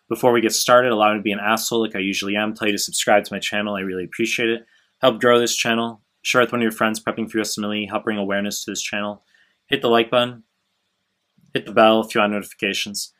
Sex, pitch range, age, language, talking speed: male, 105-125 Hz, 20-39, English, 250 wpm